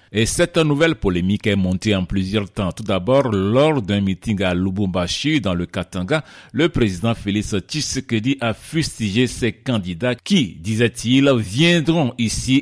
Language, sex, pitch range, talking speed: French, male, 95-130 Hz, 145 wpm